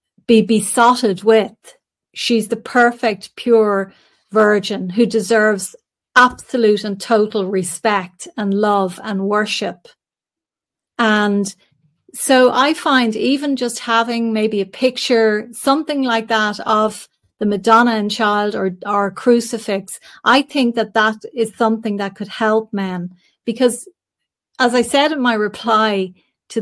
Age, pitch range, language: 40-59, 200-235 Hz, English